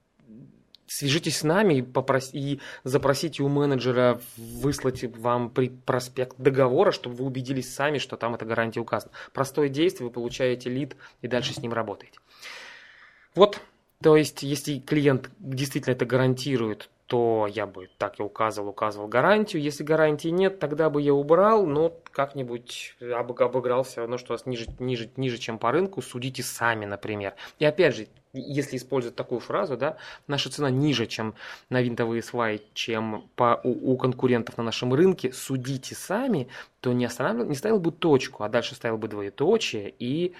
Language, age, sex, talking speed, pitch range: Russian, 20-39, male, 160 wpm, 115-140 Hz